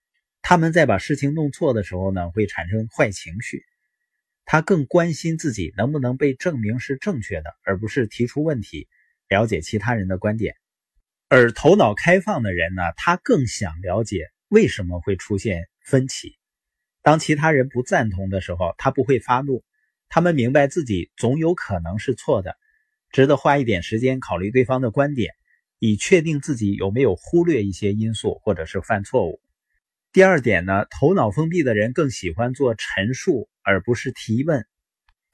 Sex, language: male, Chinese